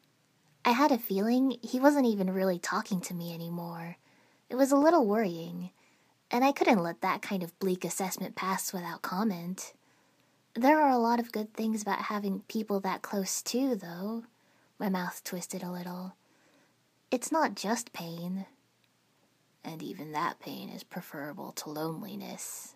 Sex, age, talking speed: female, 20-39, 160 wpm